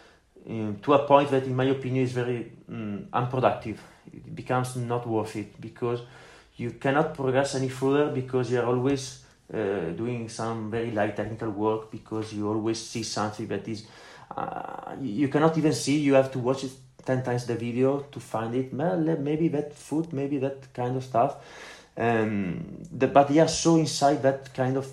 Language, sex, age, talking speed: Italian, male, 30-49, 185 wpm